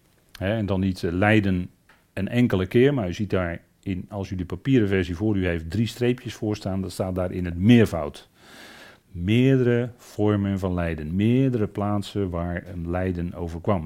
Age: 40-59